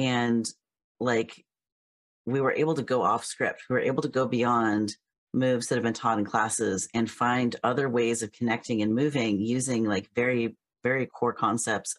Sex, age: female, 30-49